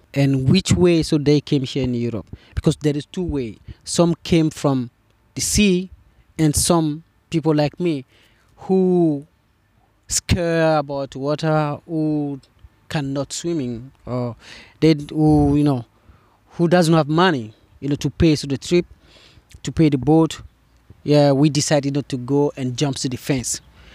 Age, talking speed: 30-49, 160 wpm